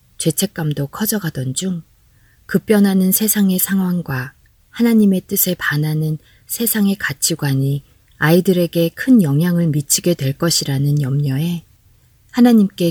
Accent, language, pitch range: native, Korean, 140-180 Hz